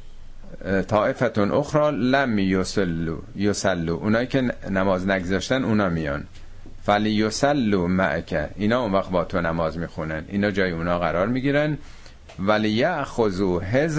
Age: 50-69